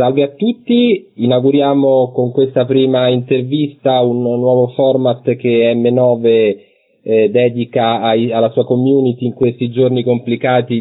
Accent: native